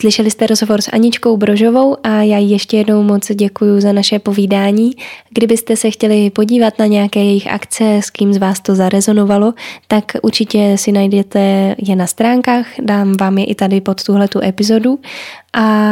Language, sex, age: Czech, female, 10-29